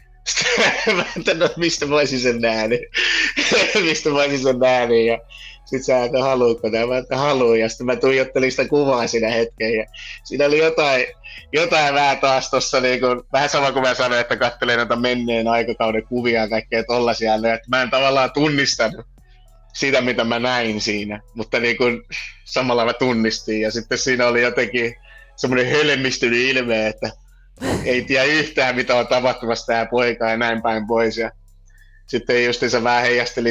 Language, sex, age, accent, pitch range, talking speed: Finnish, male, 30-49, native, 110-130 Hz, 155 wpm